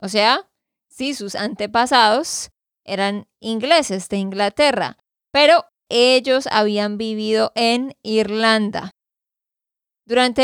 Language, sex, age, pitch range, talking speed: Spanish, female, 20-39, 215-270 Hz, 90 wpm